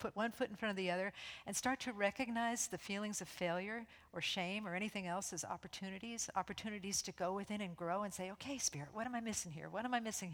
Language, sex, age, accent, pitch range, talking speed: English, female, 50-69, American, 180-230 Hz, 245 wpm